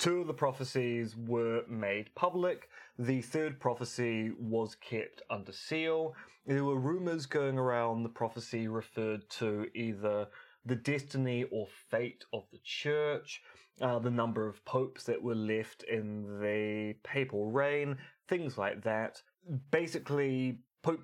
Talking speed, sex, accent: 135 wpm, male, British